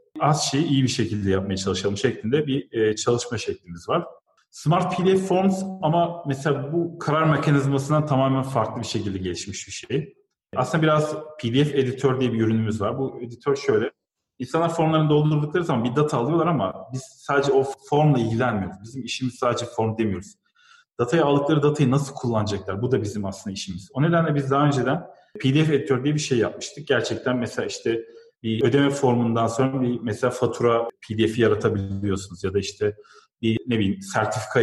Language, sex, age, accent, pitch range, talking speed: Turkish, male, 40-59, native, 110-150 Hz, 170 wpm